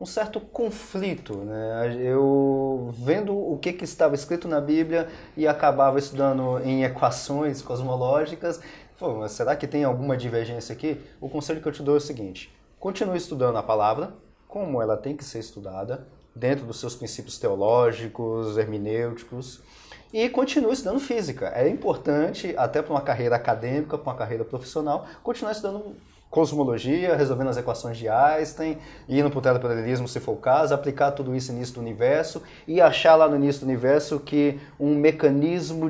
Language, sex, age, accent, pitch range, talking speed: Portuguese, male, 20-39, Brazilian, 130-170 Hz, 165 wpm